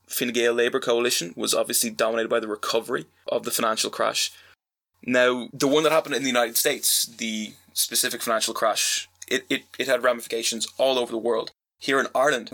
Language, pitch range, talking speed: English, 115-125 Hz, 185 wpm